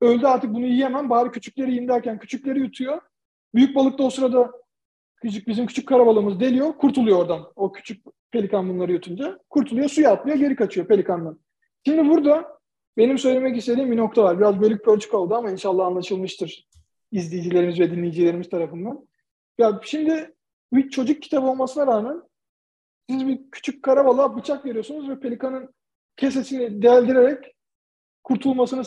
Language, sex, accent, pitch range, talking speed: Turkish, male, native, 195-255 Hz, 145 wpm